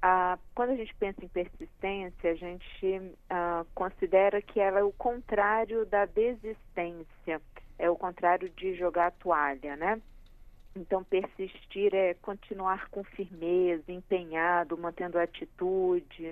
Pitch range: 175-210 Hz